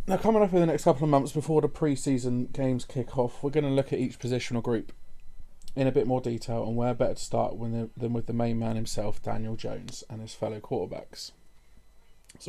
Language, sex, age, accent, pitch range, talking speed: English, male, 20-39, British, 115-135 Hz, 230 wpm